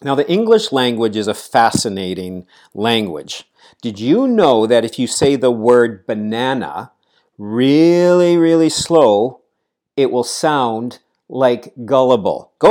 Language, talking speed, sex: English, 125 wpm, male